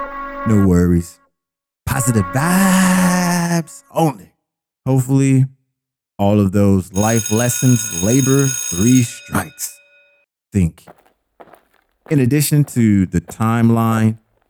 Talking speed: 85 wpm